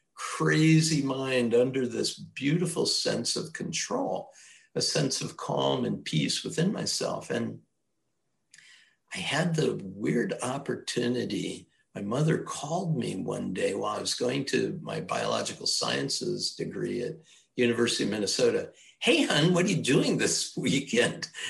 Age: 60-79